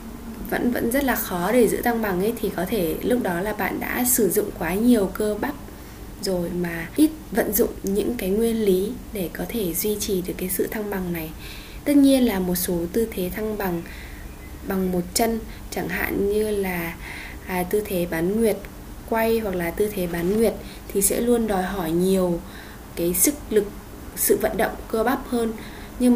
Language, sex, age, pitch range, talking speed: Vietnamese, female, 10-29, 185-230 Hz, 200 wpm